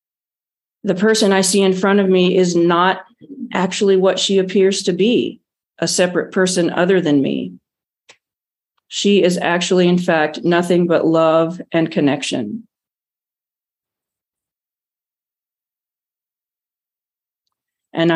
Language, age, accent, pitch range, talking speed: English, 40-59, American, 160-190 Hz, 110 wpm